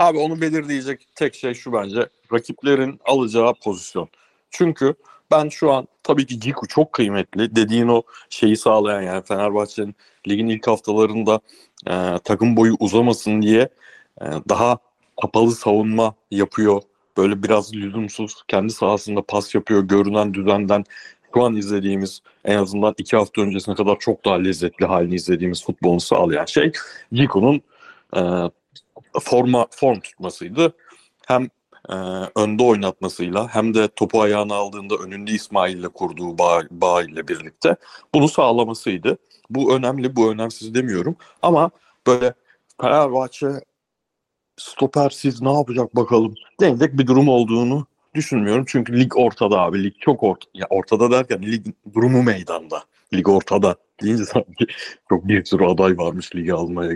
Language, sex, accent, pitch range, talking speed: Turkish, male, native, 100-125 Hz, 135 wpm